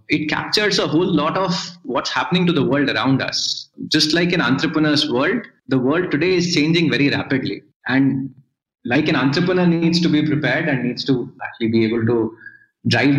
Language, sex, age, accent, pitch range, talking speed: English, male, 20-39, Indian, 130-165 Hz, 185 wpm